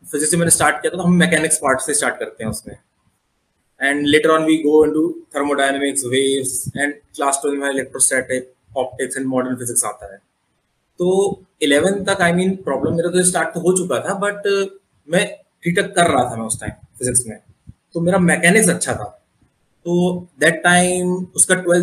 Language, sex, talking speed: English, male, 115 wpm